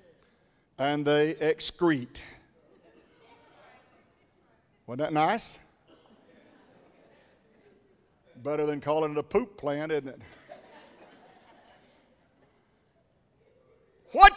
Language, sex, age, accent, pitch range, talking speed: English, male, 50-69, American, 155-225 Hz, 65 wpm